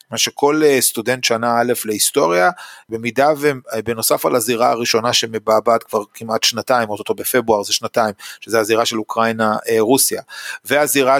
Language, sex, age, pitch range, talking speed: Hebrew, male, 30-49, 115-145 Hz, 125 wpm